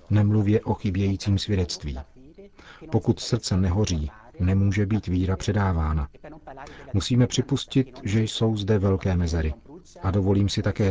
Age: 40-59